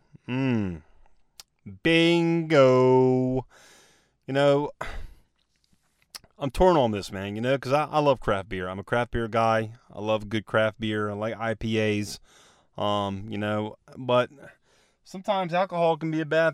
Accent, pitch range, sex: American, 105-135 Hz, male